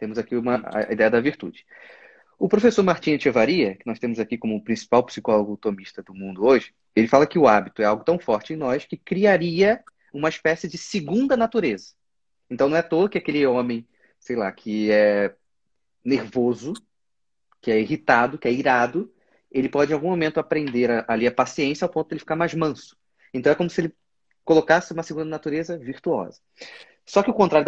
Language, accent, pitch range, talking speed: Portuguese, Brazilian, 125-180 Hz, 195 wpm